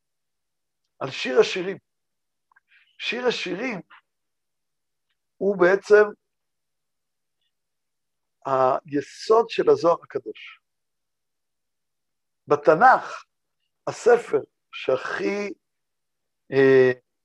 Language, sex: Hebrew, male